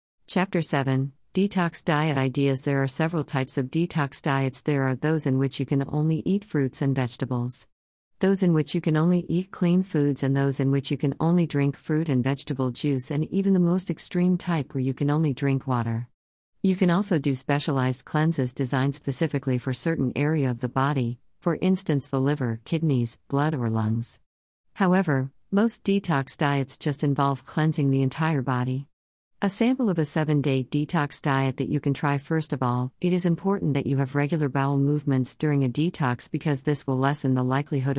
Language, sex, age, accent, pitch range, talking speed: English, female, 50-69, American, 130-155 Hz, 190 wpm